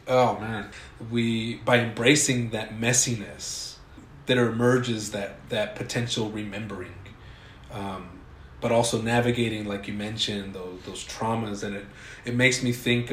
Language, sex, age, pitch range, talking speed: English, male, 30-49, 105-125 Hz, 135 wpm